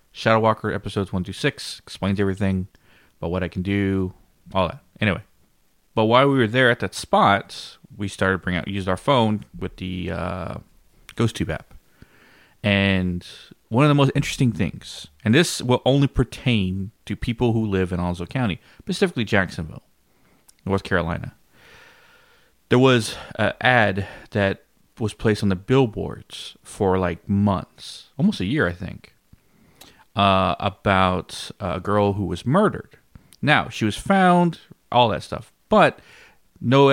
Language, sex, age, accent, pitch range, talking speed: English, male, 30-49, American, 95-120 Hz, 150 wpm